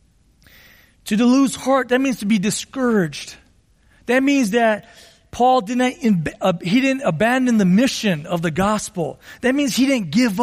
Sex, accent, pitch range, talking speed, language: male, American, 205-260 Hz, 150 wpm, English